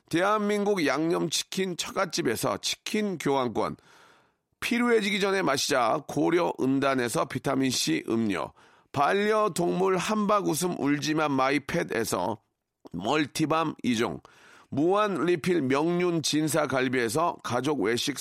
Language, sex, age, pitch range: Korean, male, 40-59, 150-205 Hz